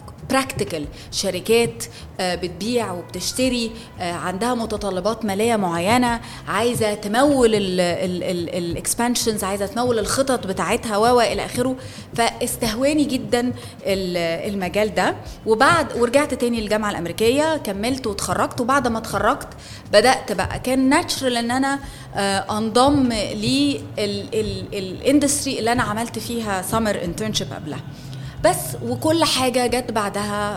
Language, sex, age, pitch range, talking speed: Arabic, female, 20-39, 185-240 Hz, 110 wpm